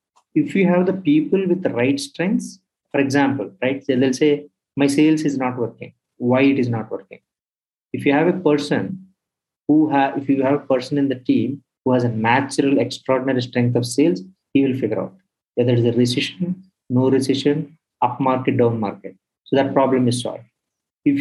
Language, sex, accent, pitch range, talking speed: English, male, Indian, 130-165 Hz, 195 wpm